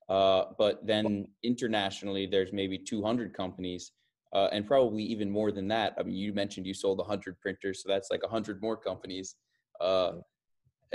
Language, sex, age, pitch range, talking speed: English, male, 20-39, 95-110 Hz, 165 wpm